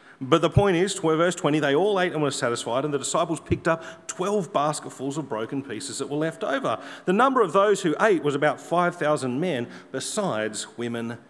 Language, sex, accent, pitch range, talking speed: English, male, Australian, 135-185 Hz, 200 wpm